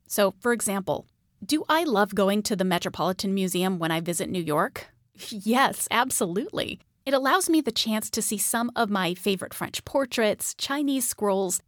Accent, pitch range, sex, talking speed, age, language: American, 190-245 Hz, female, 170 wpm, 30-49, English